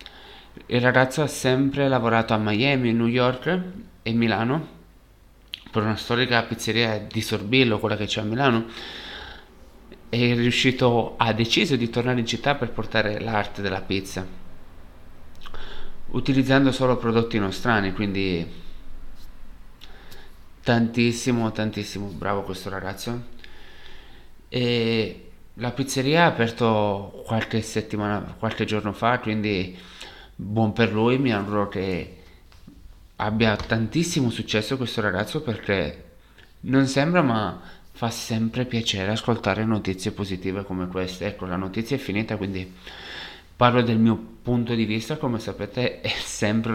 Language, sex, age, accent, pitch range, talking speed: Italian, male, 30-49, native, 100-120 Hz, 120 wpm